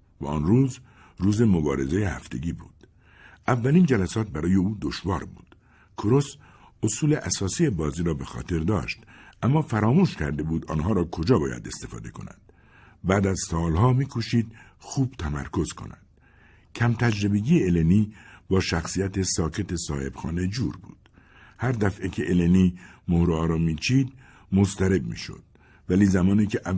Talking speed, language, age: 135 wpm, Persian, 60-79